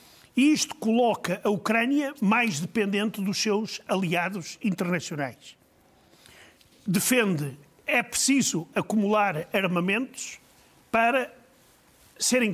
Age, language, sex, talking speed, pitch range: 50-69, Portuguese, male, 80 wpm, 180-220 Hz